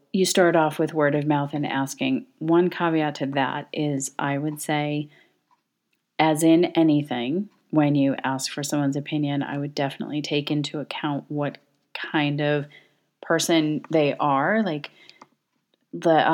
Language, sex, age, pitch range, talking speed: English, female, 30-49, 140-155 Hz, 145 wpm